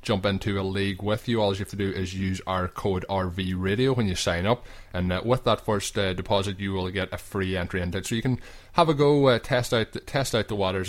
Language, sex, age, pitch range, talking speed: English, male, 20-39, 95-110 Hz, 275 wpm